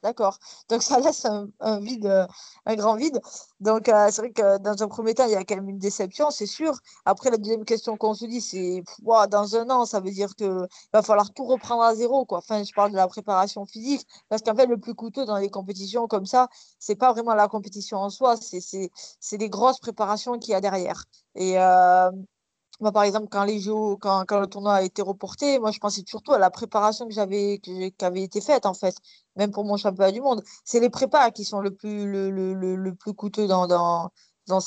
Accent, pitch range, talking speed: French, 190-230 Hz, 240 wpm